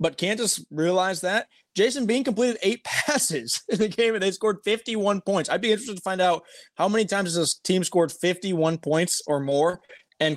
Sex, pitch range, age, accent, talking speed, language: male, 135-180 Hz, 20-39, American, 195 wpm, English